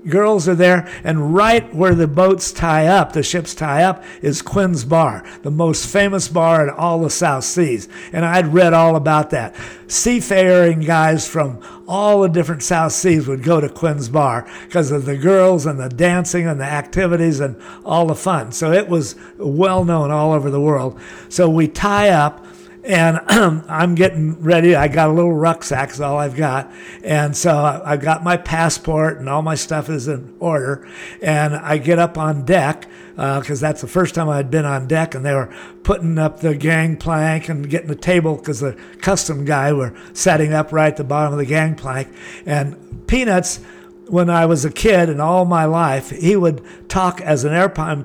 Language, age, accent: English, 60-79, American